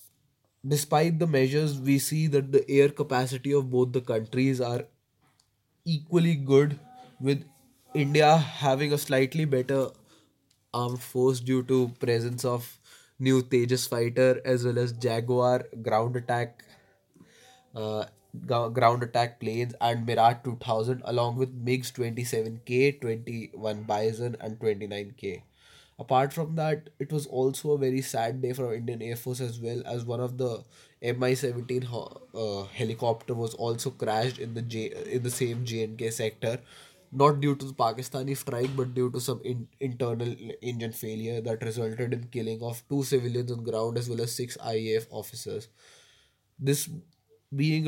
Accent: Indian